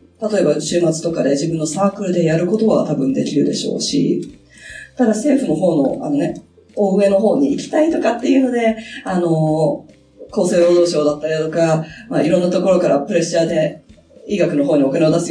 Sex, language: female, Japanese